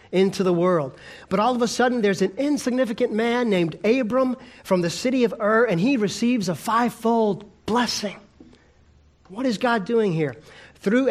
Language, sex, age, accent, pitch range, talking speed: English, male, 40-59, American, 160-220 Hz, 165 wpm